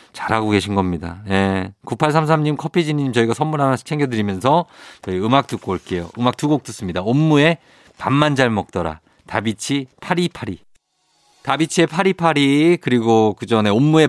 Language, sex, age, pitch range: Korean, male, 50-69, 100-150 Hz